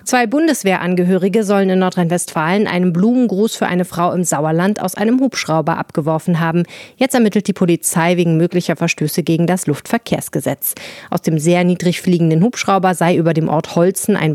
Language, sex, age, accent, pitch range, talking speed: German, female, 30-49, German, 160-200 Hz, 165 wpm